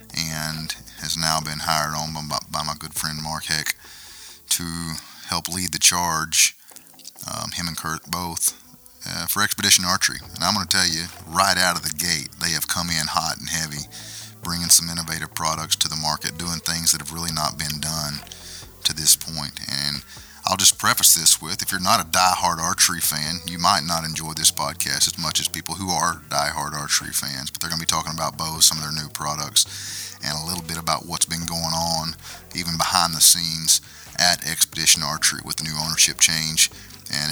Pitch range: 75-85 Hz